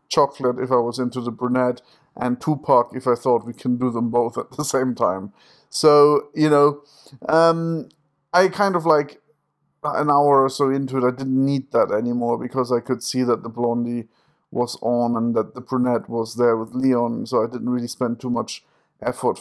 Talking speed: 200 wpm